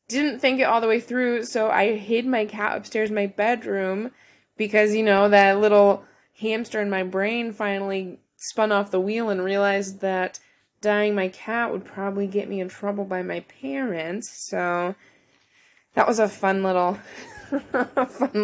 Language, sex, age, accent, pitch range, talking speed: English, female, 20-39, American, 185-215 Hz, 170 wpm